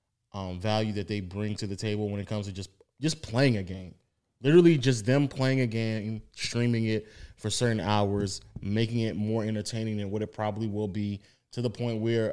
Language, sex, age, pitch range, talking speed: English, male, 20-39, 105-125 Hz, 205 wpm